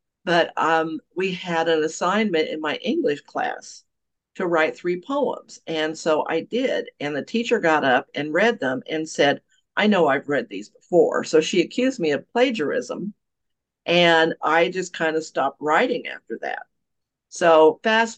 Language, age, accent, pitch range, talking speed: English, 50-69, American, 160-225 Hz, 170 wpm